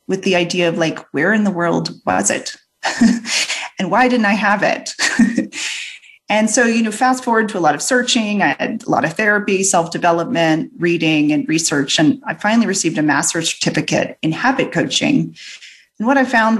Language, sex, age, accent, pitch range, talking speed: English, female, 30-49, American, 170-230 Hz, 190 wpm